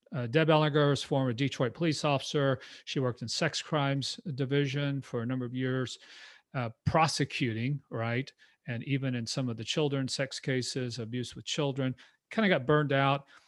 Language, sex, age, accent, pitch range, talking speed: English, male, 40-59, American, 125-150 Hz, 180 wpm